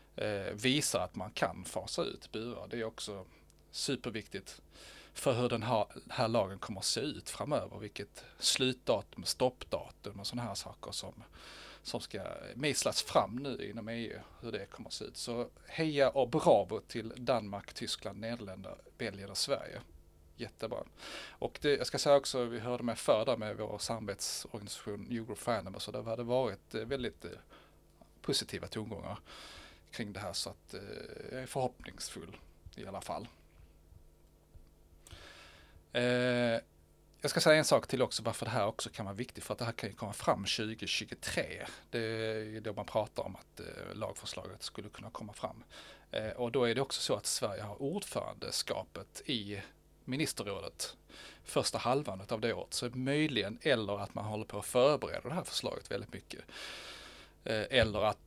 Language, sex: Swedish, male